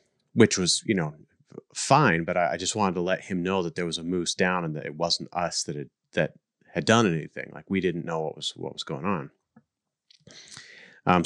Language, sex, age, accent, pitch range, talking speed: English, male, 30-49, American, 85-100 Hz, 225 wpm